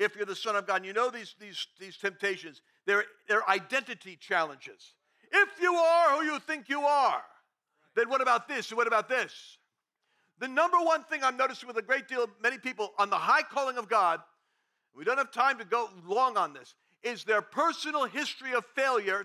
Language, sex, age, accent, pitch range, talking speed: English, male, 50-69, American, 220-285 Hz, 210 wpm